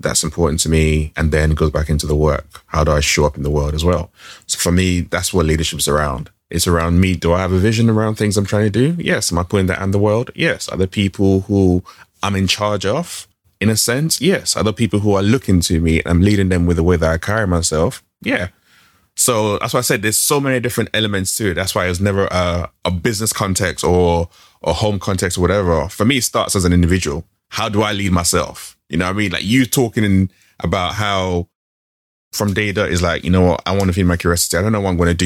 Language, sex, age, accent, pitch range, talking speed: English, male, 20-39, British, 85-105 Hz, 260 wpm